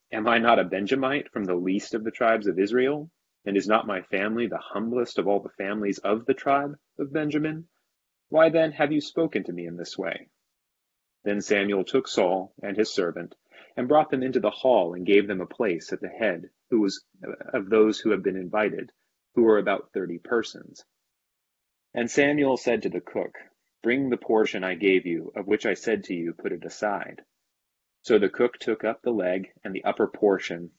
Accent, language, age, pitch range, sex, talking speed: American, English, 30-49, 95-130 Hz, male, 205 wpm